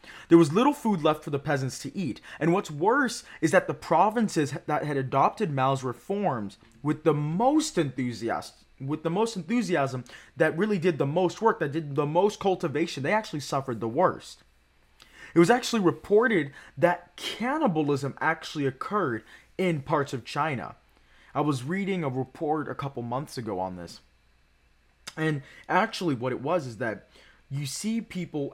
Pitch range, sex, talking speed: 135-180 Hz, male, 165 wpm